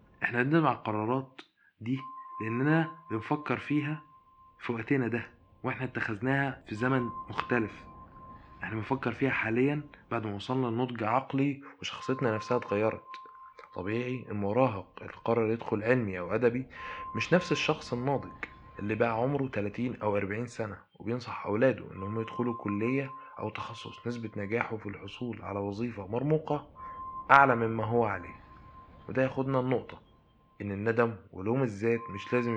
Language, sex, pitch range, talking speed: Arabic, male, 105-130 Hz, 135 wpm